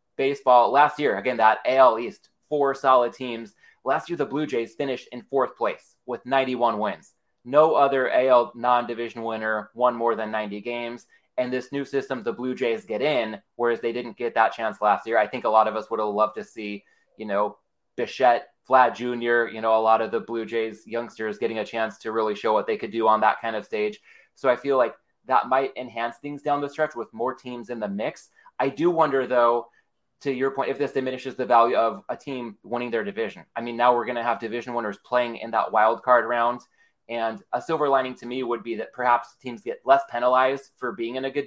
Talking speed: 230 wpm